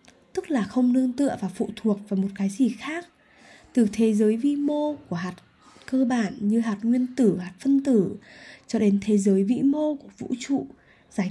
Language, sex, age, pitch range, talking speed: Vietnamese, female, 10-29, 205-280 Hz, 205 wpm